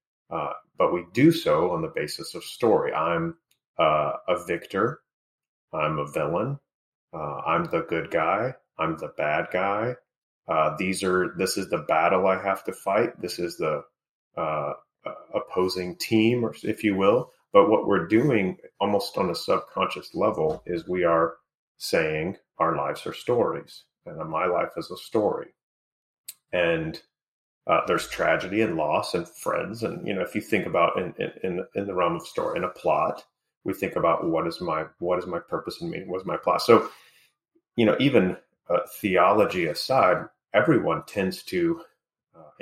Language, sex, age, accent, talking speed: English, male, 30-49, American, 170 wpm